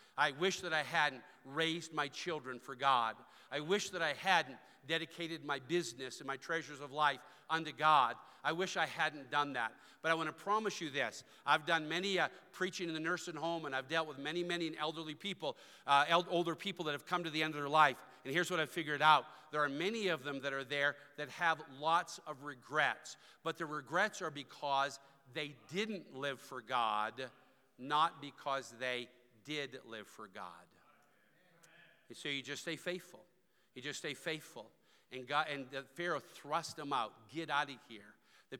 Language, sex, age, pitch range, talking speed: English, male, 50-69, 135-165 Hz, 195 wpm